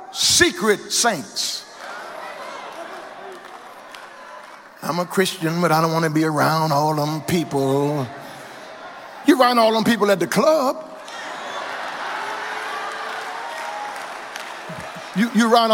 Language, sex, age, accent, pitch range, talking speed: English, male, 50-69, American, 185-275 Hz, 95 wpm